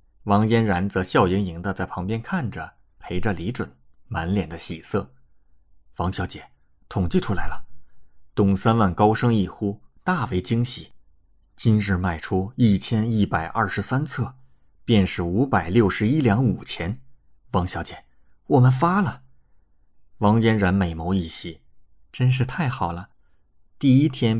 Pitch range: 85-115 Hz